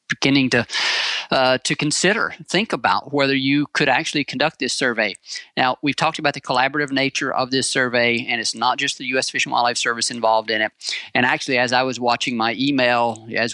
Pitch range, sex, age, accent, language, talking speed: 115-135 Hz, male, 40-59, American, English, 205 wpm